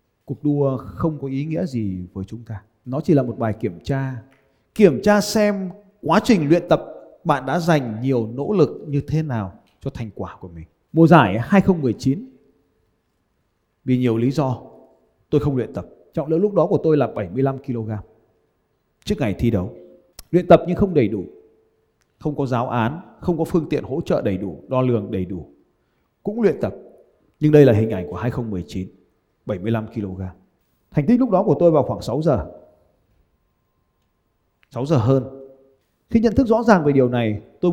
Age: 20-39